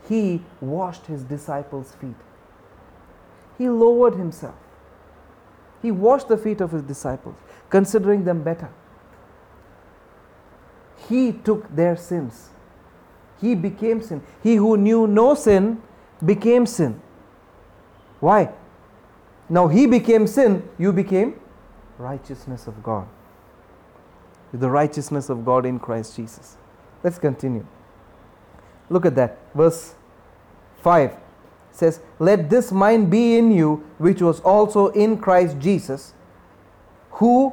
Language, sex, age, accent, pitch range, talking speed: English, male, 40-59, Indian, 150-225 Hz, 110 wpm